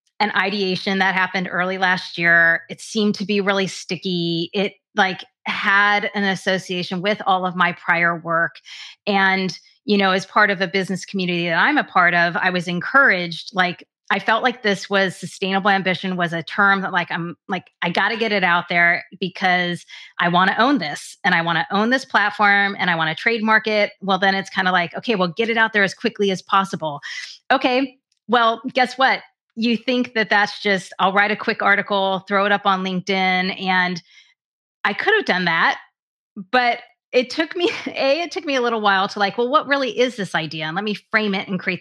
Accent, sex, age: American, female, 30-49